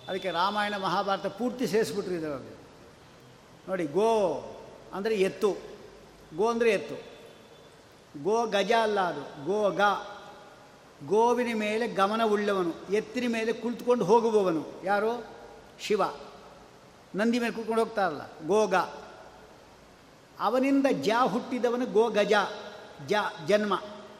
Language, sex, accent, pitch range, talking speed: Kannada, male, native, 205-240 Hz, 95 wpm